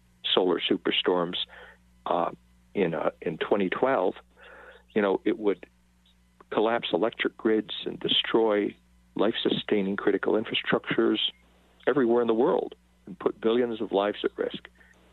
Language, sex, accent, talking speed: English, male, American, 120 wpm